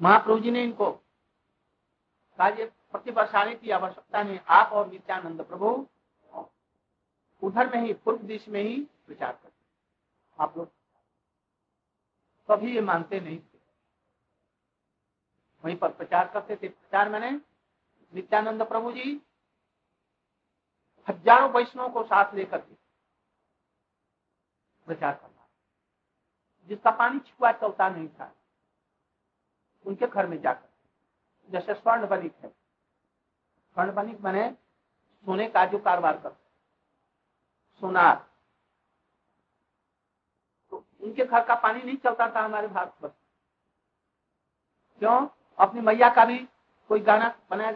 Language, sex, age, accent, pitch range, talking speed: Hindi, male, 60-79, native, 195-235 Hz, 100 wpm